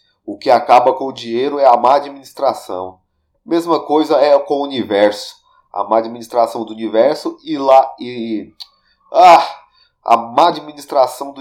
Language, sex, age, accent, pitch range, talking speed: Portuguese, male, 30-49, Brazilian, 110-170 Hz, 145 wpm